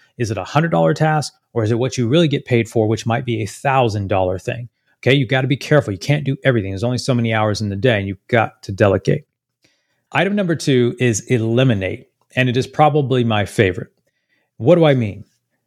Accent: American